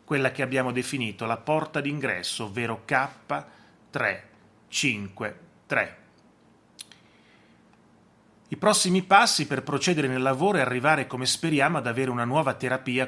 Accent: native